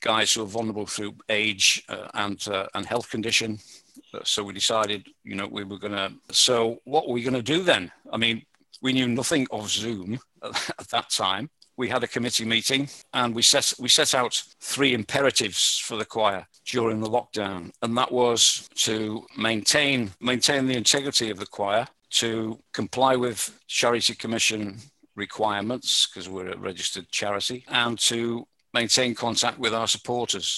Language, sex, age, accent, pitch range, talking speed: English, male, 50-69, British, 105-120 Hz, 165 wpm